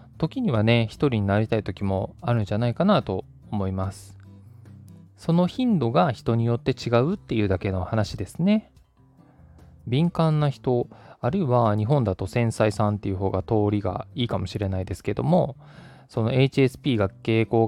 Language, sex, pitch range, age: Japanese, male, 105-145 Hz, 20-39